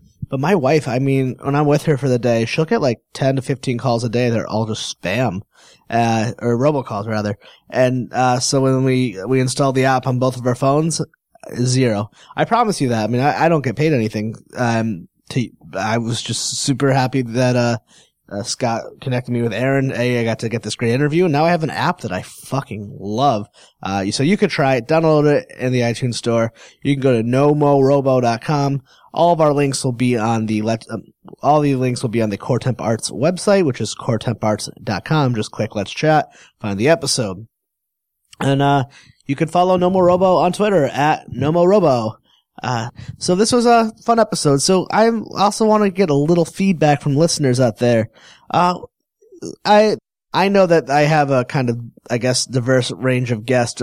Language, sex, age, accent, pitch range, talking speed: English, male, 20-39, American, 120-155 Hz, 205 wpm